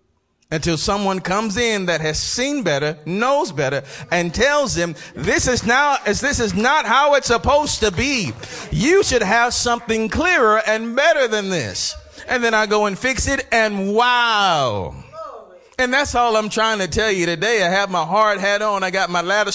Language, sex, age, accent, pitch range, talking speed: English, male, 40-59, American, 175-255 Hz, 190 wpm